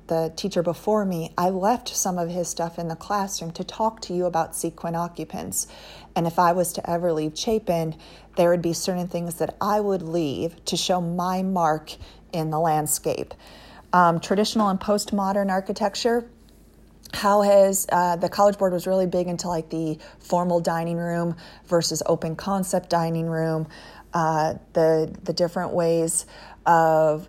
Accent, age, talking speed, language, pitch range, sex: American, 40-59, 165 wpm, English, 160-180 Hz, female